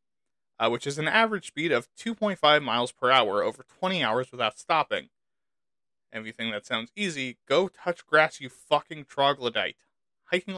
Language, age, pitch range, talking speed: English, 20-39, 130-170 Hz, 165 wpm